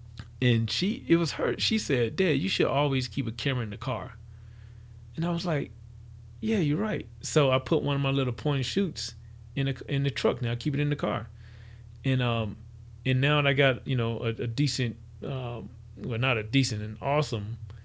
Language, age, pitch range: English, 30-49, 115-140 Hz